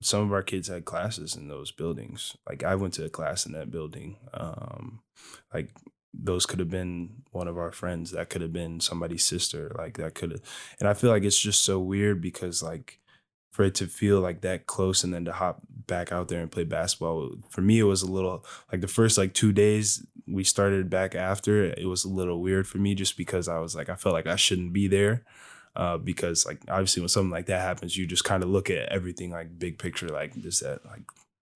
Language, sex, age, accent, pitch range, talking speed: English, male, 10-29, American, 90-105 Hz, 235 wpm